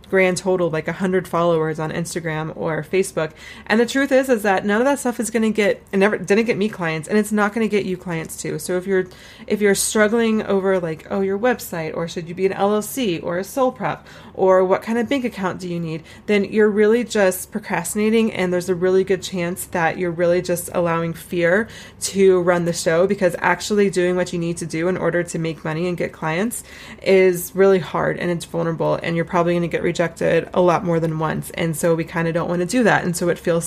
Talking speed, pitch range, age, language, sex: 245 wpm, 170-195 Hz, 20-39, English, female